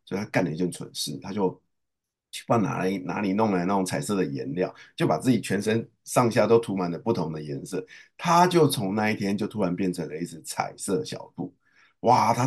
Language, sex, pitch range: Chinese, male, 90-125 Hz